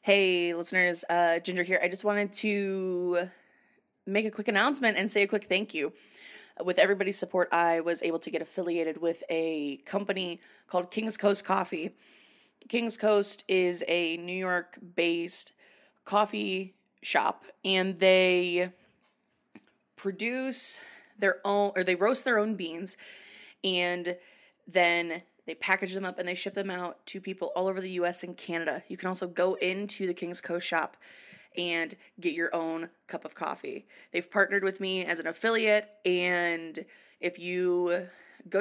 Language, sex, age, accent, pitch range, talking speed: English, female, 20-39, American, 175-205 Hz, 155 wpm